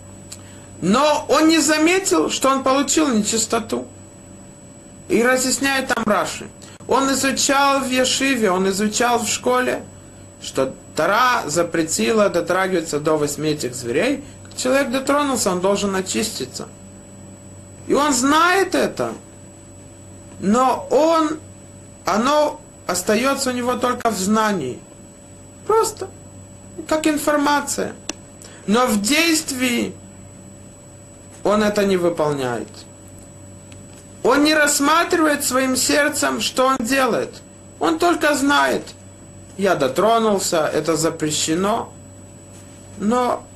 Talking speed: 100 wpm